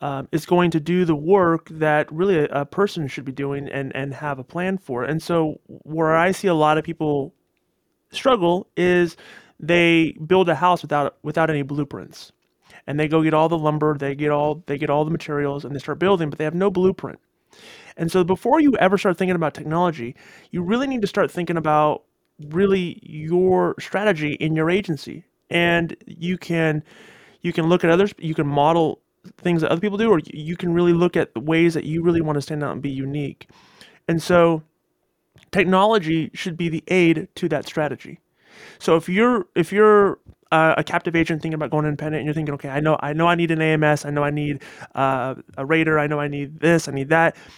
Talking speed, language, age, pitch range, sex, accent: 215 wpm, English, 30-49, 150-175 Hz, male, American